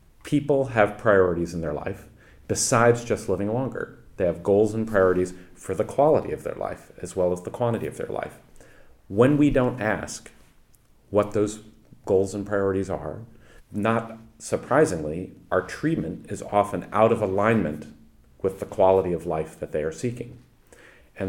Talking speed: 165 wpm